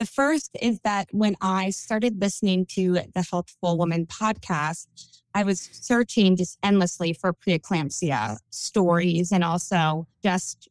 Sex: female